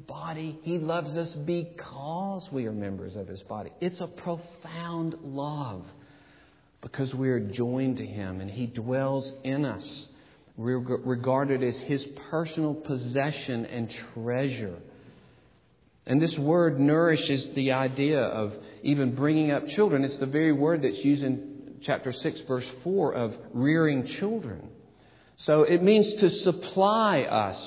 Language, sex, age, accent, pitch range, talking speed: English, male, 50-69, American, 135-185 Hz, 140 wpm